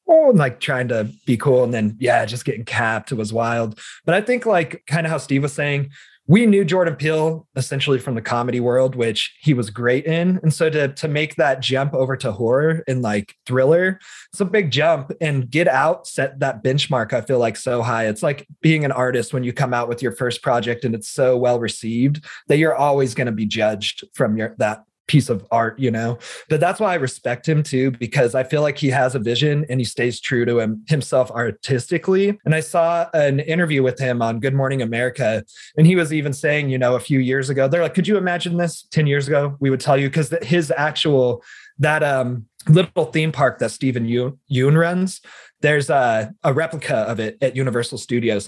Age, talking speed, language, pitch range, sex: 30-49, 220 wpm, English, 120-155 Hz, male